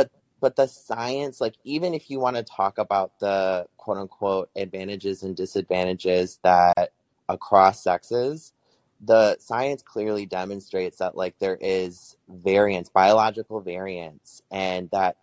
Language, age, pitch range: English, 20-39, 95-120 Hz